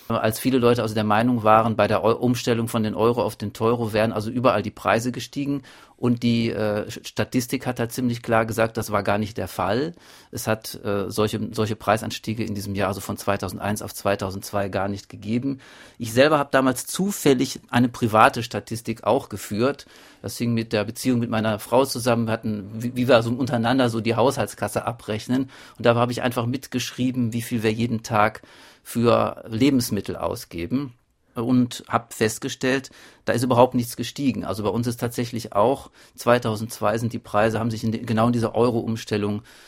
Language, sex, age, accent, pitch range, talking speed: German, male, 40-59, German, 110-125 Hz, 190 wpm